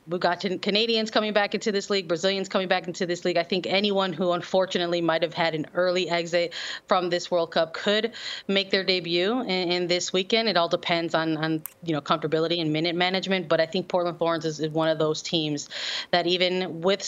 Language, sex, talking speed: English, female, 210 wpm